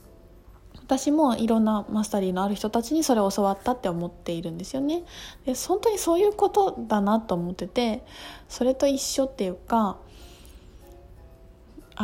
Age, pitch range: 20-39, 195-275 Hz